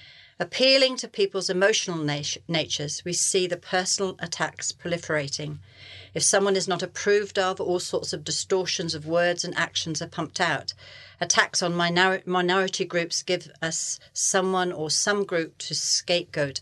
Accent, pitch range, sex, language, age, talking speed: British, 150-180 Hz, female, English, 40-59, 145 wpm